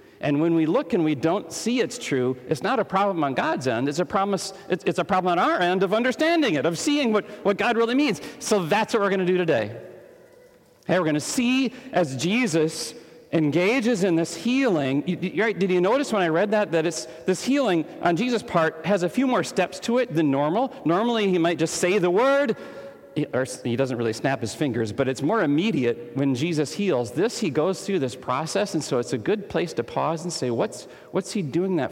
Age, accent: 40-59, American